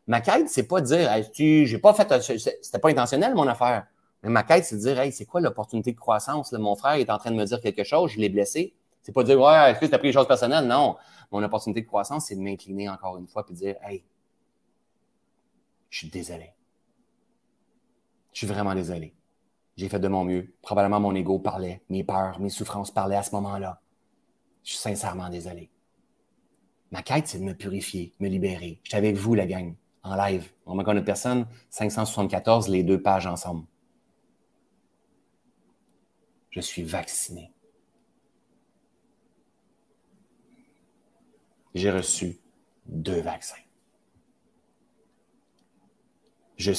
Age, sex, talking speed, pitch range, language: 30-49, male, 165 wpm, 95-110 Hz, French